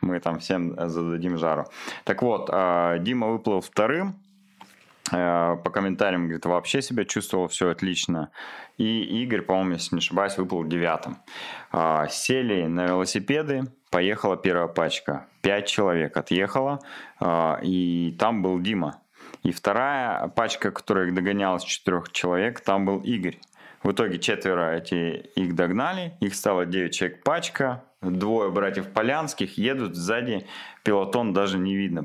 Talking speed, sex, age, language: 130 wpm, male, 20-39, Russian